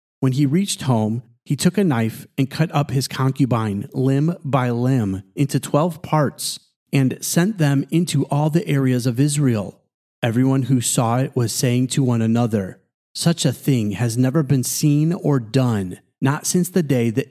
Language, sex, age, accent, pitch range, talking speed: English, male, 30-49, American, 125-150 Hz, 175 wpm